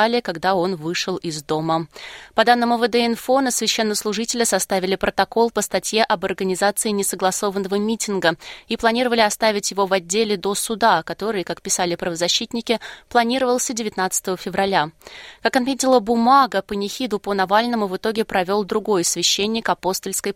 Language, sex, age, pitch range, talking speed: Russian, female, 20-39, 180-225 Hz, 135 wpm